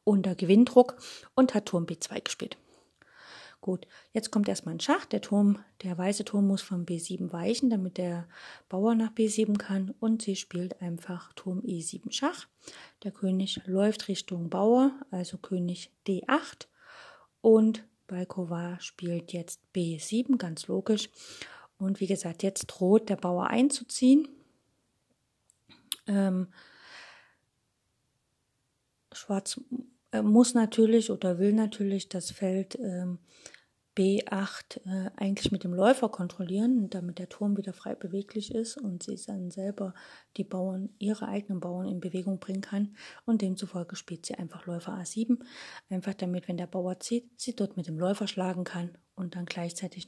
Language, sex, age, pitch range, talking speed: German, female, 30-49, 180-220 Hz, 140 wpm